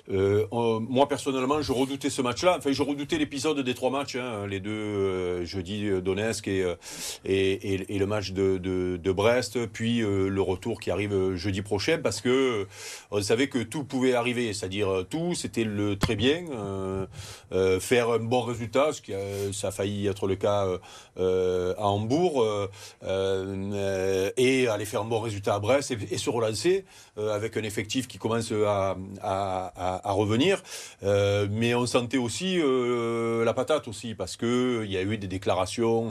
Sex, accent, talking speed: male, French, 185 wpm